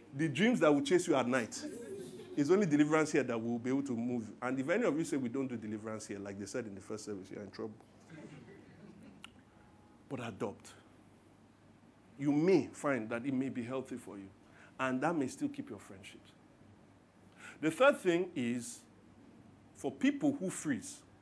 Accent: Nigerian